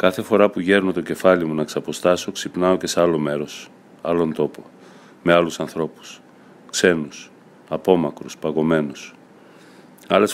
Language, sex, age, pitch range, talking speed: Greek, male, 40-59, 80-90 Hz, 135 wpm